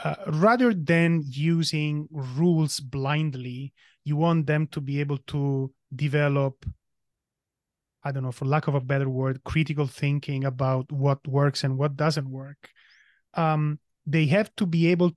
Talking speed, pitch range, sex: 150 wpm, 140-170 Hz, male